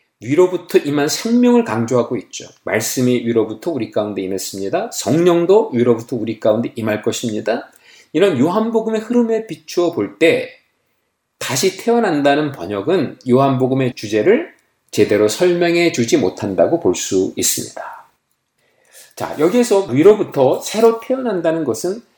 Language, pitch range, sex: Korean, 125-190 Hz, male